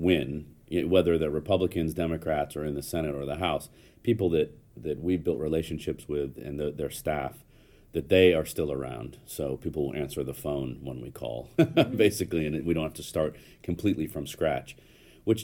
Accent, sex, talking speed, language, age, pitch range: American, male, 185 wpm, English, 40-59, 70-90 Hz